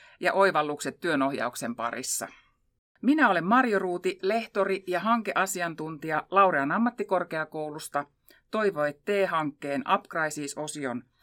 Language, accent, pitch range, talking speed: Finnish, native, 150-210 Hz, 85 wpm